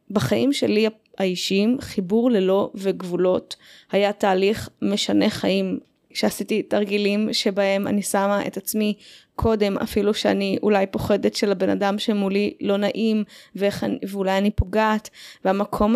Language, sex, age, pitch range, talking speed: Hebrew, female, 20-39, 195-235 Hz, 120 wpm